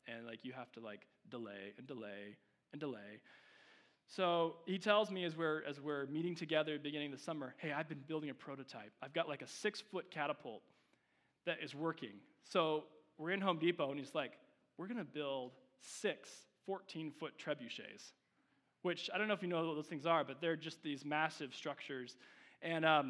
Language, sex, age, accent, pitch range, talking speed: English, male, 20-39, American, 135-175 Hz, 205 wpm